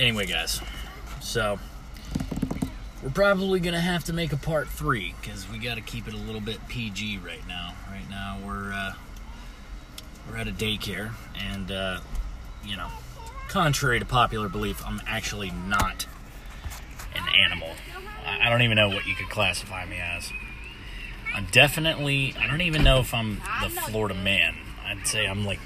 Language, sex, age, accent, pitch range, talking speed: English, male, 30-49, American, 100-130 Hz, 165 wpm